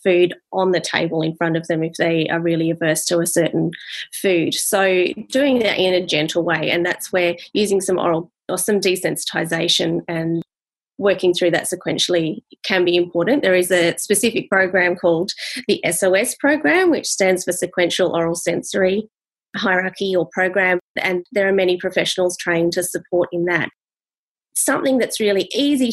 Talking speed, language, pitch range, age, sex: 170 wpm, English, 175-215 Hz, 20-39, female